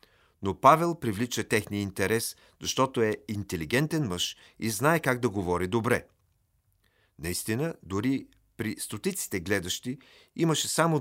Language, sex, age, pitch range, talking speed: Bulgarian, male, 40-59, 100-135 Hz, 120 wpm